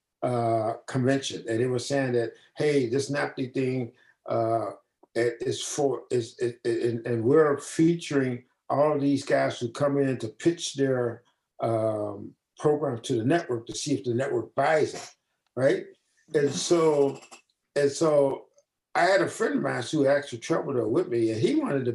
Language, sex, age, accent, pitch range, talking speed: English, male, 50-69, American, 120-145 Hz, 170 wpm